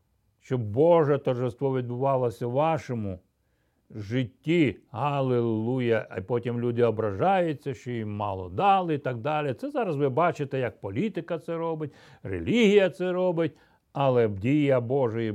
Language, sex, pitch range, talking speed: Ukrainian, male, 120-195 Hz, 130 wpm